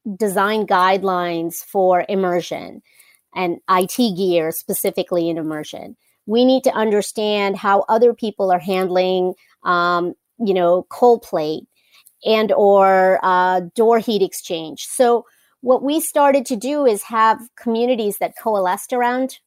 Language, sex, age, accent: English, female, 30-49, American